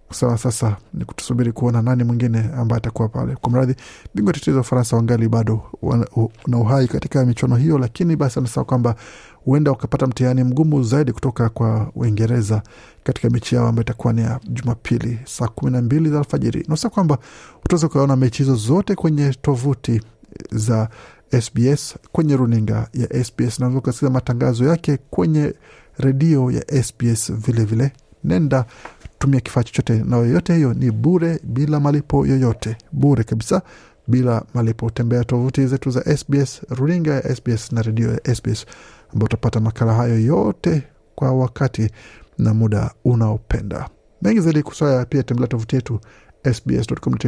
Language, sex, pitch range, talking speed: Swahili, male, 115-140 Hz, 145 wpm